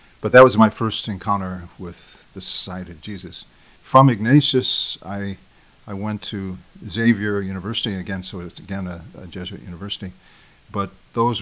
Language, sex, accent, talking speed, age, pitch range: English, male, American, 150 wpm, 50-69, 90-105 Hz